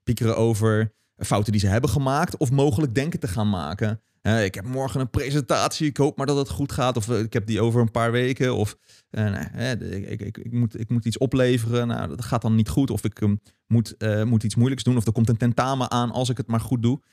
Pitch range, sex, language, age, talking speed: 110-135 Hz, male, Dutch, 30-49, 235 wpm